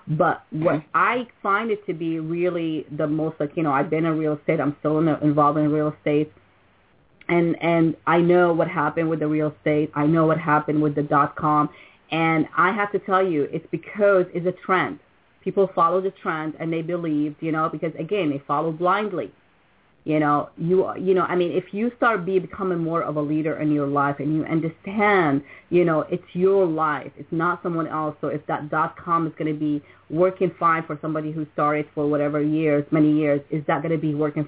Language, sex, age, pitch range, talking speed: English, female, 30-49, 150-170 Hz, 215 wpm